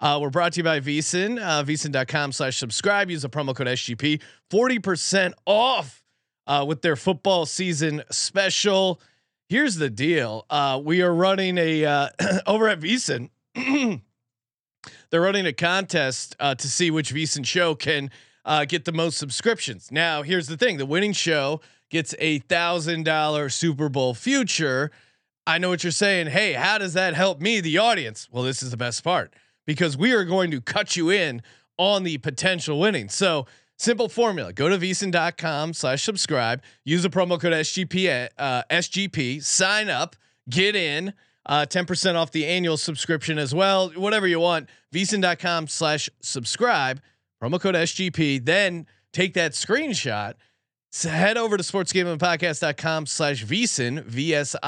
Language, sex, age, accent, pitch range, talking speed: English, male, 30-49, American, 145-185 Hz, 165 wpm